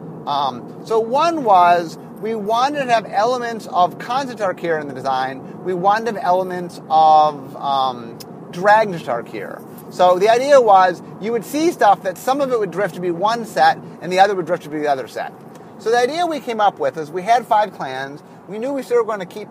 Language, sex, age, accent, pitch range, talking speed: English, male, 30-49, American, 175-230 Hz, 215 wpm